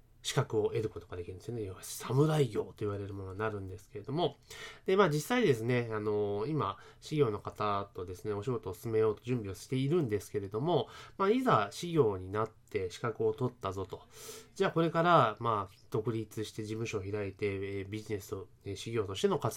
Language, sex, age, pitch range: Japanese, male, 20-39, 105-155 Hz